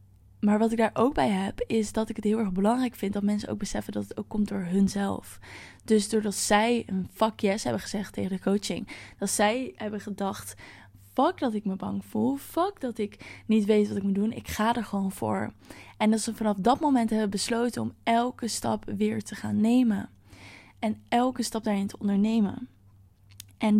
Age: 20-39